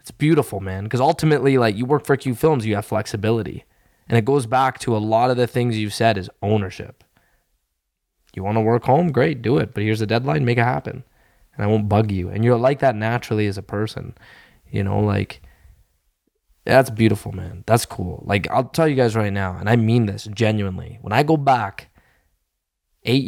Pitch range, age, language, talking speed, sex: 105-135 Hz, 20-39, English, 210 wpm, male